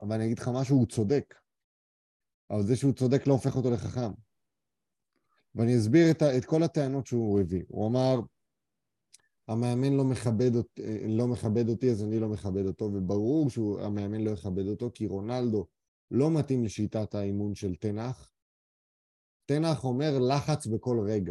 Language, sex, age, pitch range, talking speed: Hebrew, male, 30-49, 105-130 Hz, 145 wpm